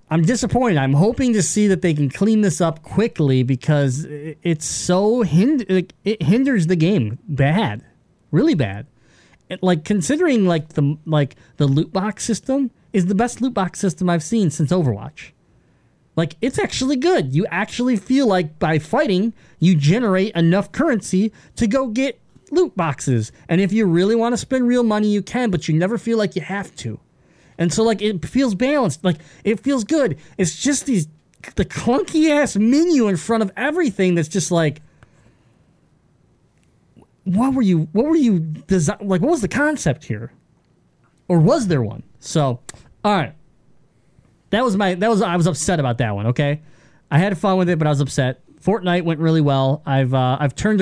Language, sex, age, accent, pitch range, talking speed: English, male, 20-39, American, 155-220 Hz, 180 wpm